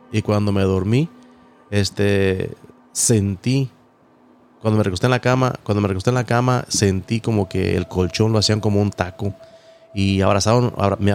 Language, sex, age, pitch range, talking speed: English, male, 30-49, 100-125 Hz, 165 wpm